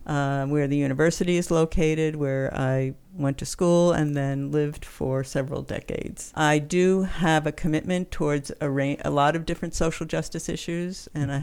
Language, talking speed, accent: English, 175 wpm, American